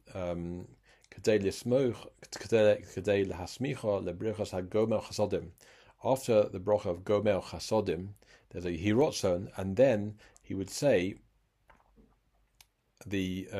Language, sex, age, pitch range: English, male, 50-69, 90-105 Hz